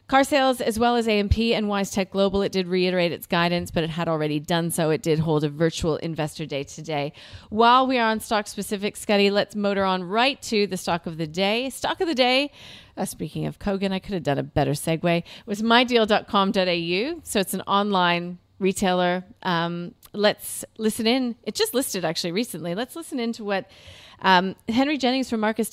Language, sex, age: English, female, 30-49